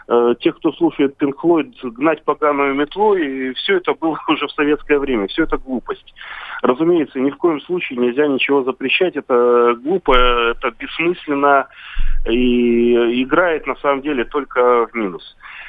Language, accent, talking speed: Russian, native, 145 wpm